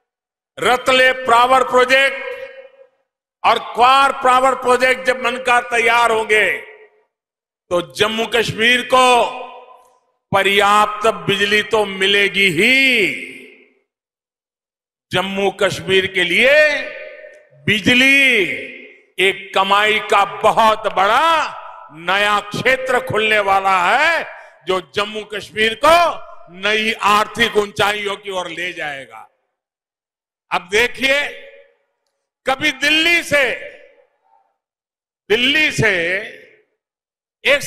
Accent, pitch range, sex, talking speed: native, 205-300 Hz, male, 85 wpm